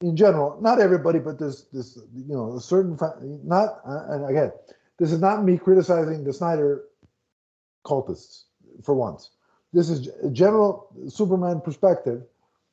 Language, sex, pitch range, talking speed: English, male, 145-195 Hz, 140 wpm